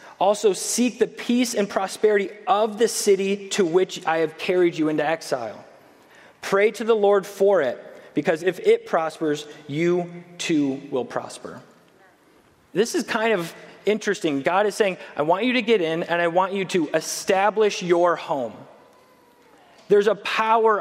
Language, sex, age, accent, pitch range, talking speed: English, male, 30-49, American, 170-210 Hz, 160 wpm